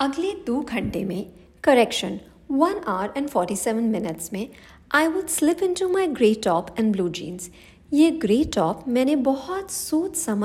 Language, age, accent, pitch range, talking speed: English, 50-69, Indian, 200-315 Hz, 155 wpm